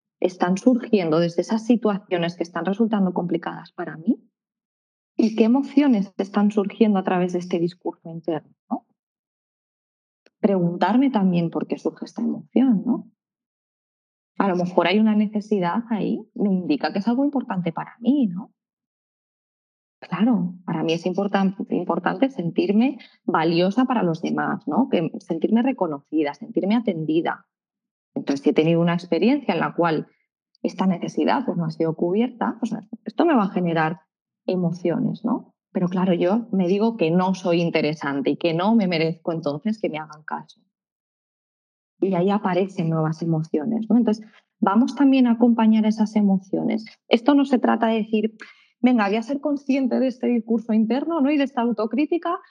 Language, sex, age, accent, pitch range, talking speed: Spanish, female, 20-39, Spanish, 175-235 Hz, 150 wpm